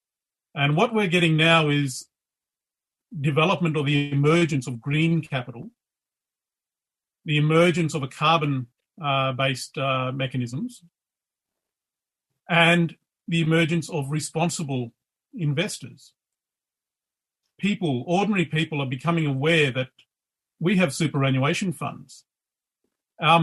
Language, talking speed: English, 95 wpm